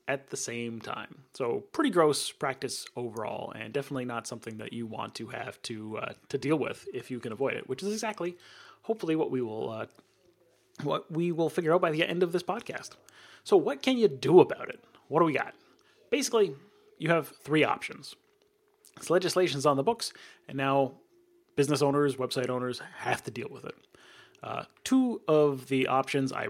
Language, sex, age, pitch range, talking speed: English, male, 30-49, 125-195 Hz, 190 wpm